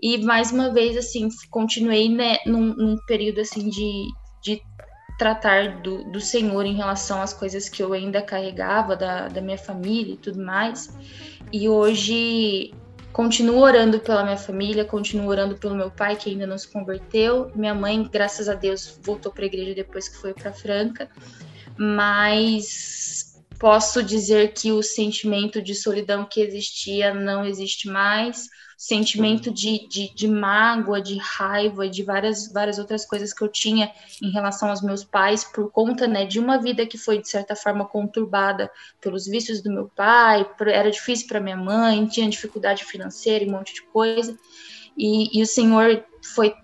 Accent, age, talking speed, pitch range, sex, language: Brazilian, 10-29, 170 wpm, 200-225 Hz, female, Portuguese